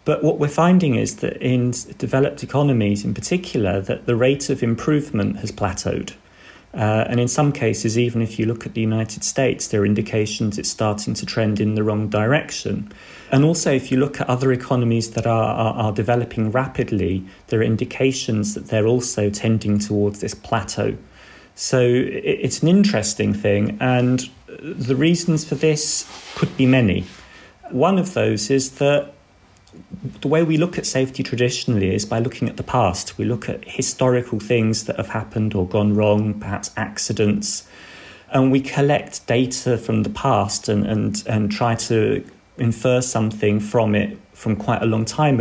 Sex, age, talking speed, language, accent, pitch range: male, 40-59, 175 wpm, English, British, 105-130 Hz